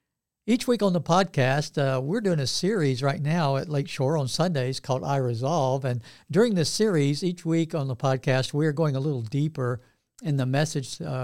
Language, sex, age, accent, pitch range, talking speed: English, male, 60-79, American, 135-165 Hz, 200 wpm